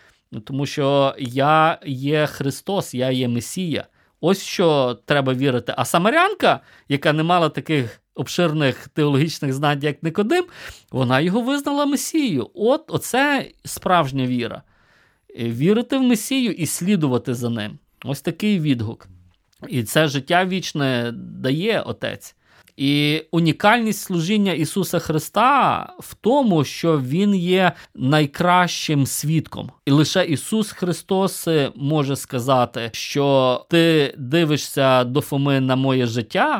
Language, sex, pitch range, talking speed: Ukrainian, male, 130-175 Hz, 120 wpm